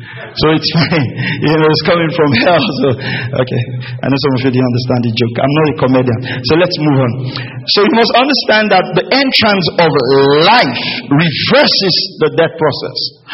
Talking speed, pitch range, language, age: 185 wpm, 140-230 Hz, English, 50-69